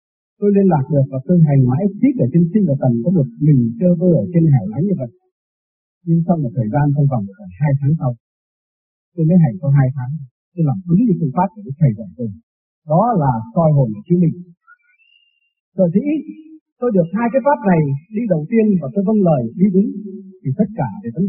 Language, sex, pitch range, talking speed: Vietnamese, male, 140-210 Hz, 230 wpm